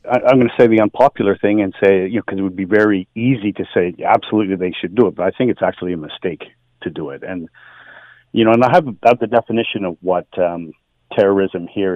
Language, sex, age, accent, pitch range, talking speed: English, male, 40-59, American, 95-110 Hz, 240 wpm